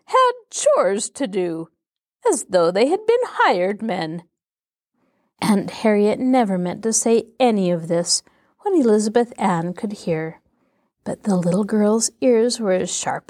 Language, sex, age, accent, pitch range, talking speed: English, female, 40-59, American, 185-245 Hz, 150 wpm